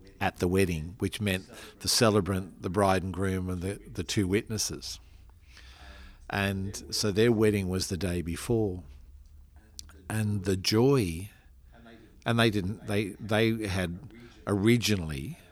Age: 50-69